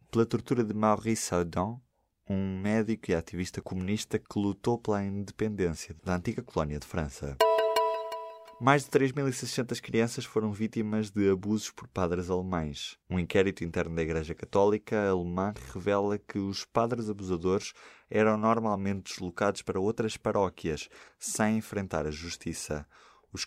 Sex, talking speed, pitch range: male, 135 wpm, 90-110 Hz